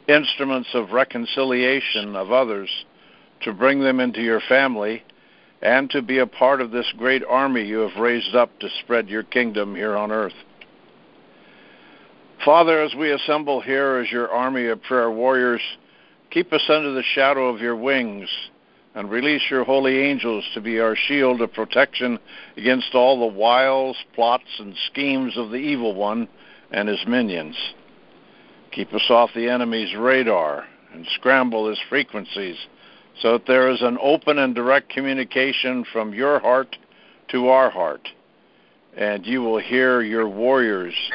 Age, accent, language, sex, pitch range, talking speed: 60-79, American, English, male, 110-135 Hz, 155 wpm